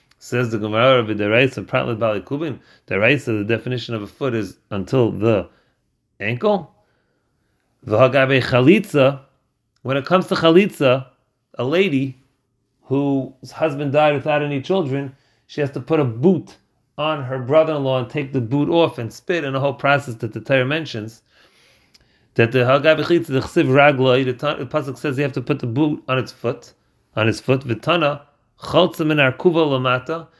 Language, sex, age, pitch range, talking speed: English, male, 30-49, 115-150 Hz, 140 wpm